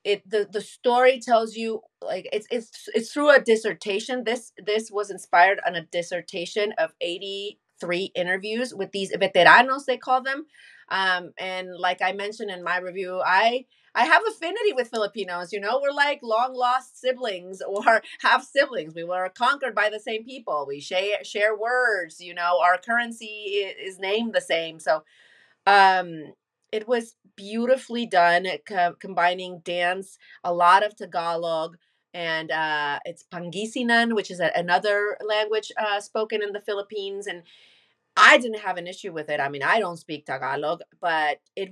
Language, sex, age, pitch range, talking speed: English, female, 30-49, 180-230 Hz, 165 wpm